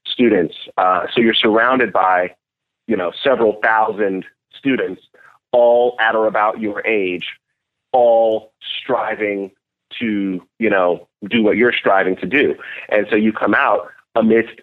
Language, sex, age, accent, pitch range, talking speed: English, male, 30-49, American, 100-125 Hz, 140 wpm